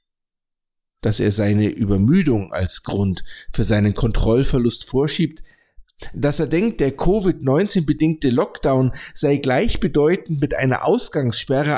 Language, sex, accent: German, male, German